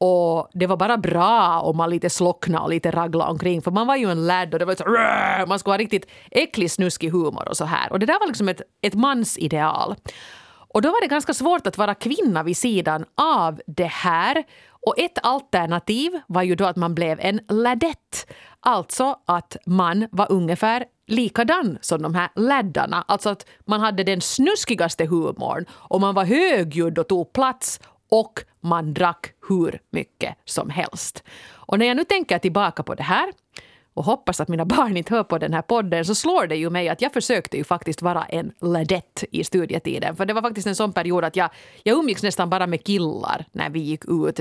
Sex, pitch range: female, 170-225 Hz